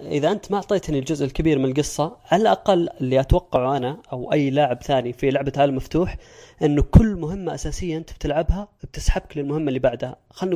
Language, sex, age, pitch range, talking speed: Arabic, female, 20-39, 135-170 Hz, 180 wpm